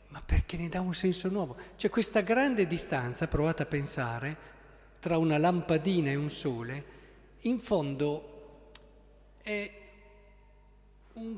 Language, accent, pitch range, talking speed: Italian, native, 130-185 Hz, 125 wpm